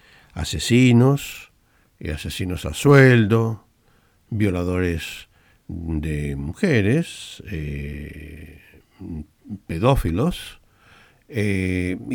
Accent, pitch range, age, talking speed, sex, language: Argentinian, 85-120 Hz, 60-79, 50 wpm, male, Spanish